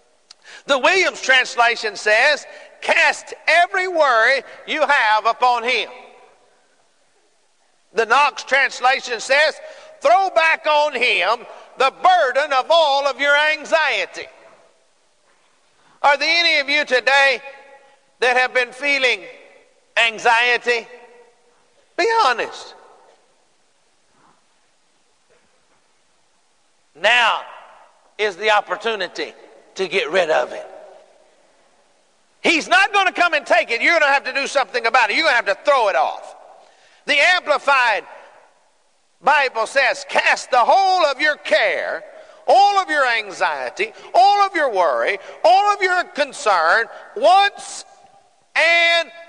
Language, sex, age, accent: English, male, 50-69, American